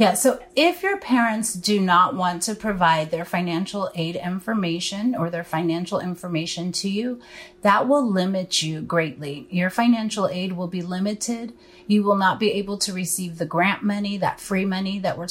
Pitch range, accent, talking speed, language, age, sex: 175-215 Hz, American, 180 wpm, English, 30-49, female